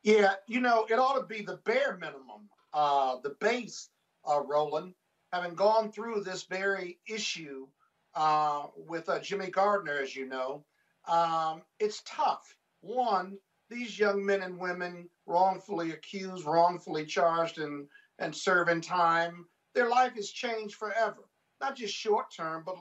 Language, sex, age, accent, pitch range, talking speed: English, male, 50-69, American, 170-220 Hz, 145 wpm